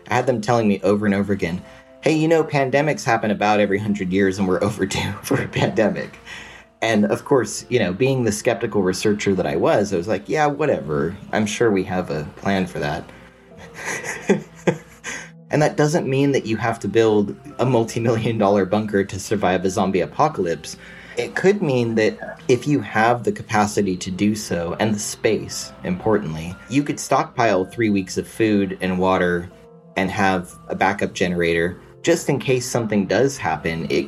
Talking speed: 180 wpm